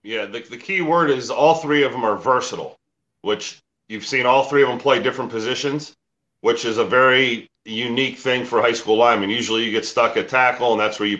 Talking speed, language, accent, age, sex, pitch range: 225 wpm, English, American, 40-59, male, 115-145 Hz